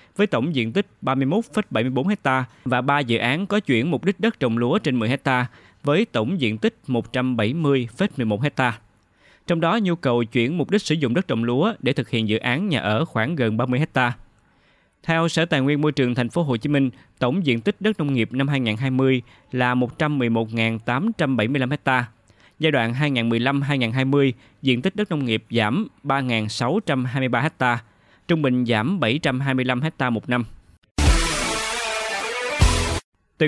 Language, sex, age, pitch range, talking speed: Vietnamese, male, 20-39, 115-150 Hz, 160 wpm